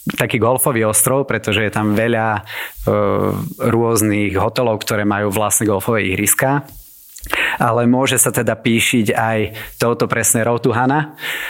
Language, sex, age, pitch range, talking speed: Slovak, male, 30-49, 105-125 Hz, 125 wpm